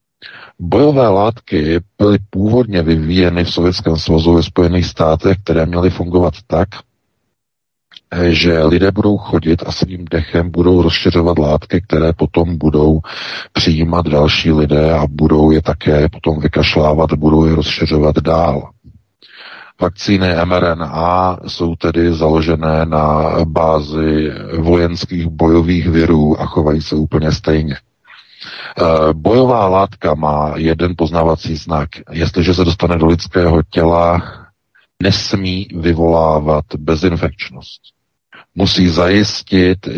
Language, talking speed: Czech, 110 wpm